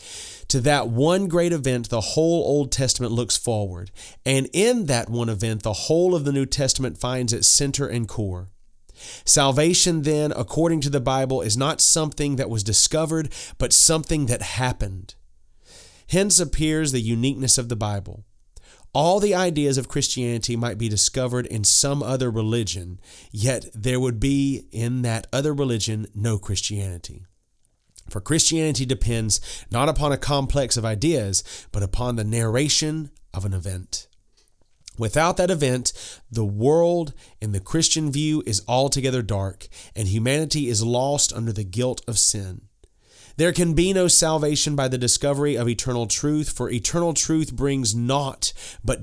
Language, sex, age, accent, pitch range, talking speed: English, male, 30-49, American, 105-145 Hz, 155 wpm